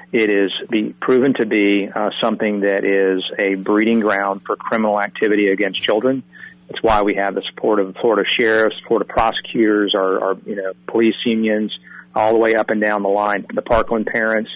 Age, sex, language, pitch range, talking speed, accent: 40-59, male, English, 105-115 Hz, 175 wpm, American